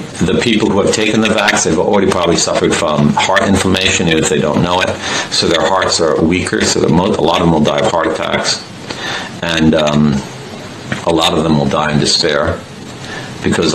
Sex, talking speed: male, 210 wpm